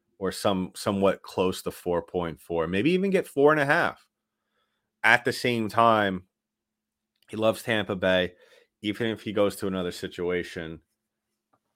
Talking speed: 130 wpm